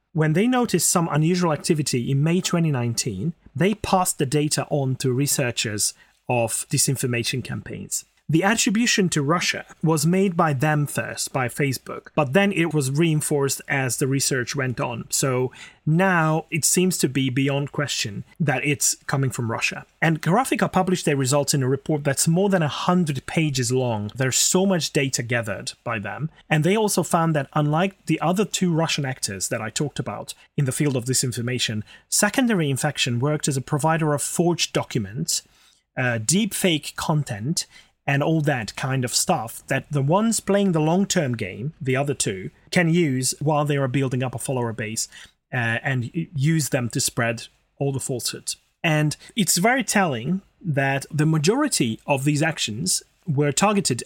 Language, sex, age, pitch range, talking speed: English, male, 30-49, 130-170 Hz, 170 wpm